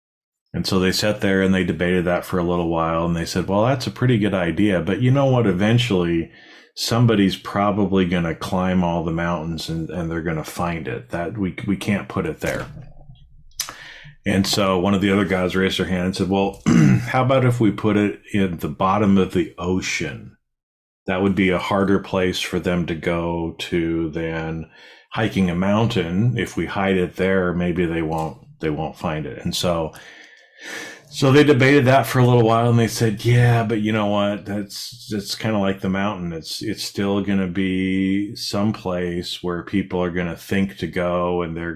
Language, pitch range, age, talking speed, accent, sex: English, 85-105 Hz, 40-59, 200 wpm, American, male